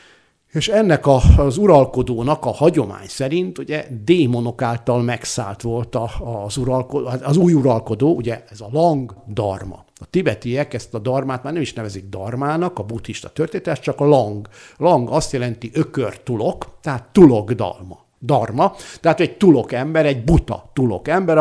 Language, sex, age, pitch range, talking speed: Hungarian, male, 60-79, 115-150 Hz, 155 wpm